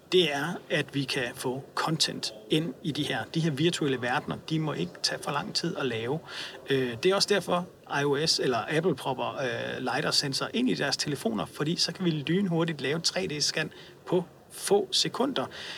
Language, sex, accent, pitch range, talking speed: Danish, male, native, 140-180 Hz, 185 wpm